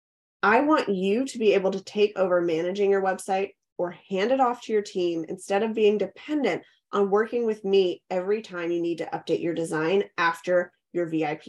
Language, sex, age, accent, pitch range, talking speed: English, female, 20-39, American, 180-225 Hz, 200 wpm